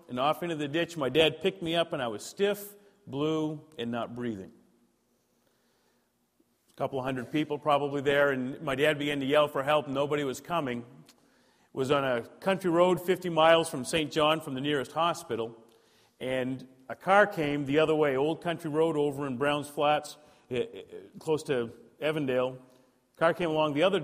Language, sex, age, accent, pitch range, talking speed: English, male, 40-59, American, 125-165 Hz, 180 wpm